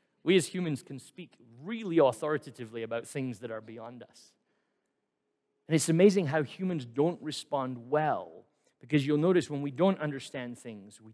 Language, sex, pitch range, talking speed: English, male, 130-175 Hz, 160 wpm